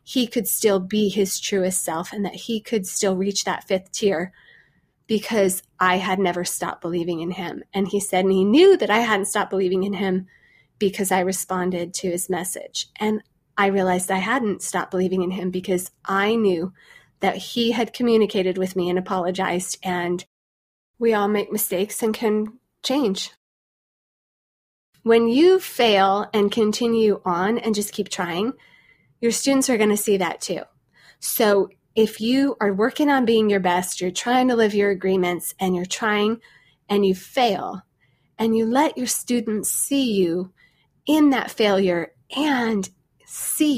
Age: 20-39